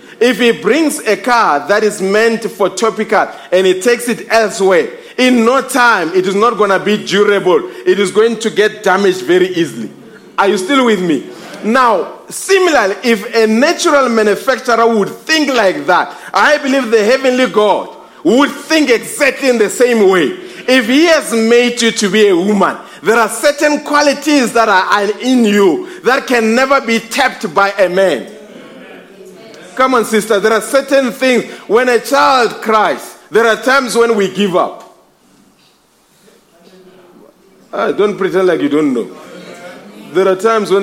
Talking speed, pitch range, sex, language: 170 wpm, 190-255 Hz, male, English